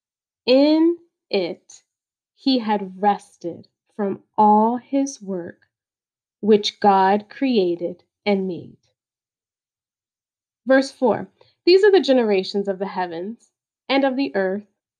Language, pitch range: English, 195-260 Hz